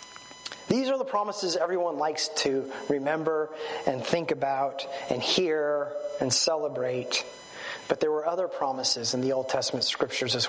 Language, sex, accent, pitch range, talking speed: English, male, American, 150-205 Hz, 150 wpm